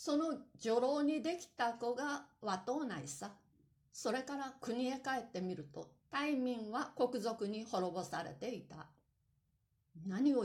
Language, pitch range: Japanese, 190-270 Hz